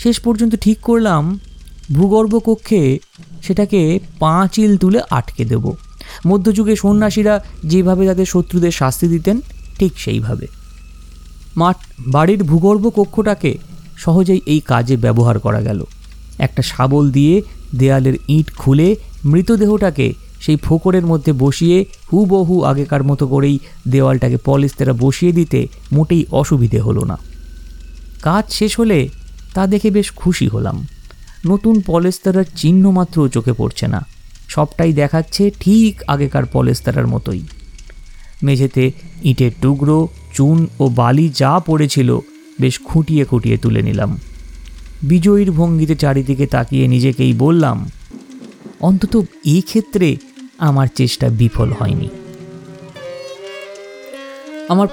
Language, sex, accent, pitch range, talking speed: Bengali, male, native, 135-190 Hz, 110 wpm